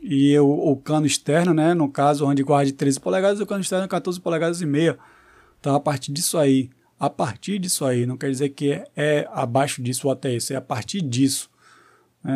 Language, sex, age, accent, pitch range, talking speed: Portuguese, male, 20-39, Brazilian, 140-170 Hz, 220 wpm